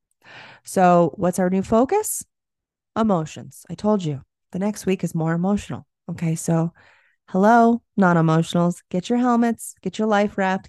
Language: English